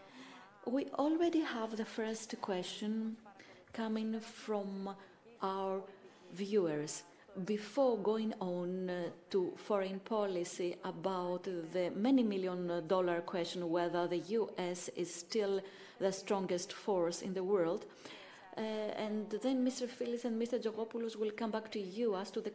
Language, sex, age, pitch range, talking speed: Greek, female, 30-49, 180-220 Hz, 130 wpm